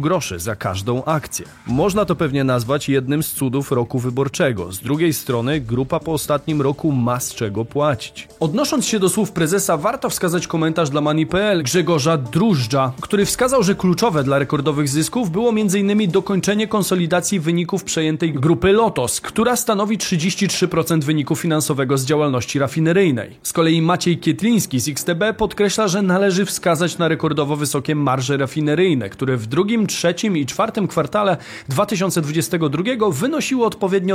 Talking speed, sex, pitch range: 150 wpm, male, 140-195 Hz